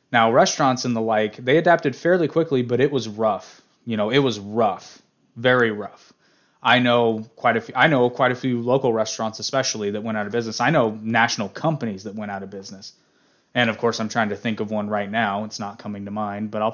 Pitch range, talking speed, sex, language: 105-135 Hz, 235 wpm, male, English